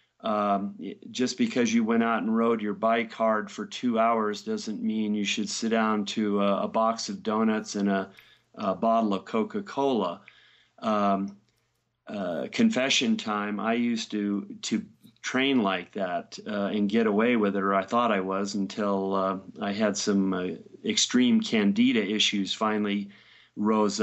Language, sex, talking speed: English, male, 160 wpm